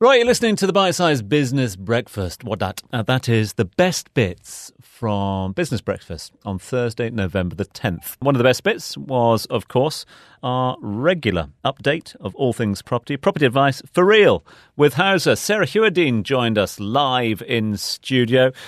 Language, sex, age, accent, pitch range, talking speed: English, male, 40-59, British, 105-145 Hz, 165 wpm